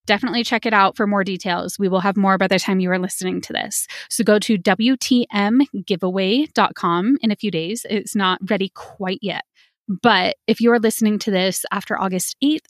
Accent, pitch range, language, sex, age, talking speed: American, 190-230 Hz, English, female, 20-39, 195 wpm